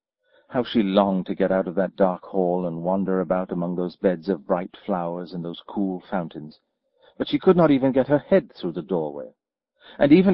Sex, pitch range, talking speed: male, 95-135 Hz, 210 wpm